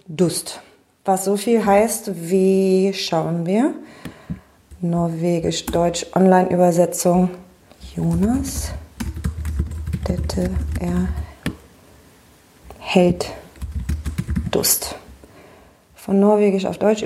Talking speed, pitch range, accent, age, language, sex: 65 wpm, 175-225 Hz, German, 30-49, German, female